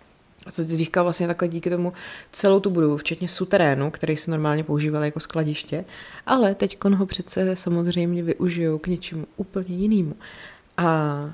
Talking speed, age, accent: 155 wpm, 30-49, native